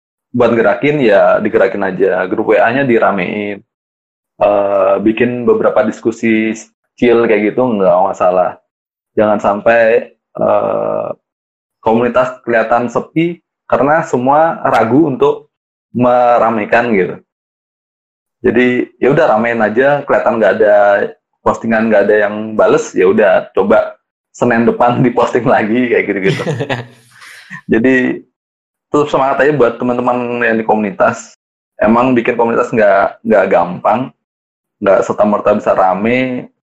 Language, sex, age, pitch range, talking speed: Indonesian, male, 20-39, 110-125 Hz, 115 wpm